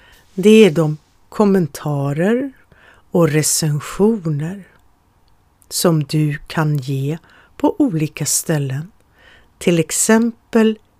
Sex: female